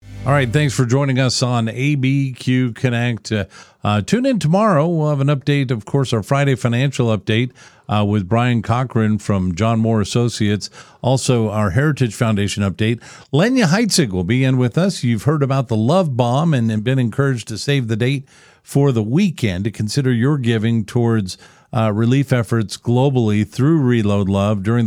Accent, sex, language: American, male, English